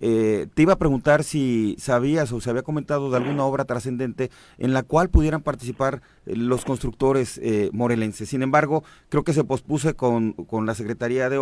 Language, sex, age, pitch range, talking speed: Spanish, male, 40-59, 120-155 Hz, 185 wpm